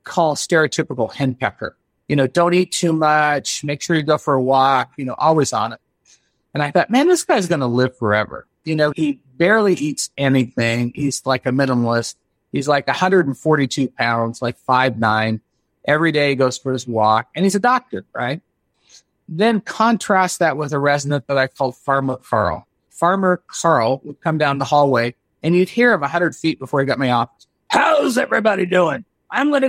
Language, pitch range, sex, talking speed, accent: English, 130-175 Hz, male, 195 wpm, American